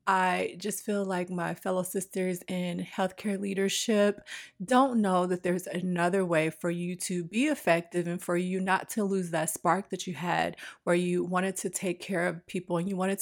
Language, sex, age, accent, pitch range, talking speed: English, female, 30-49, American, 175-200 Hz, 195 wpm